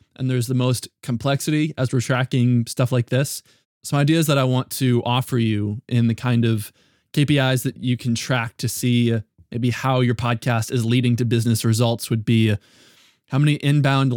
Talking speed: 185 wpm